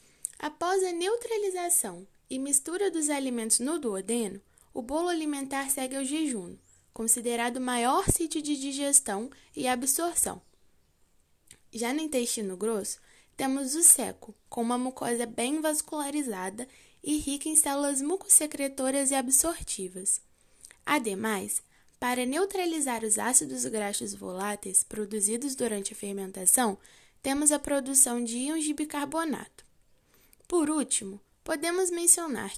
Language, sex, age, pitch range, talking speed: Portuguese, female, 10-29, 235-325 Hz, 120 wpm